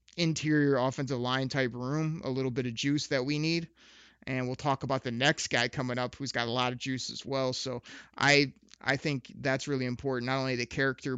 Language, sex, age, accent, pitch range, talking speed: English, male, 30-49, American, 125-135 Hz, 220 wpm